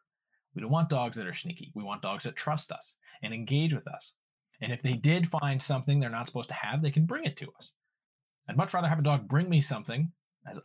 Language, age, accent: English, 20-39, American